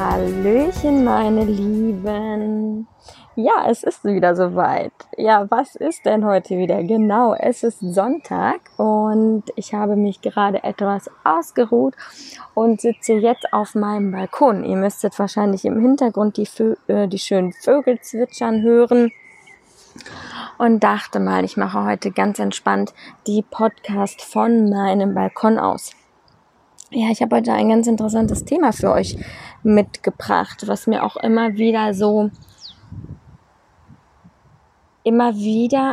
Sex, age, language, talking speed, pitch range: female, 20-39, German, 125 wpm, 205-235 Hz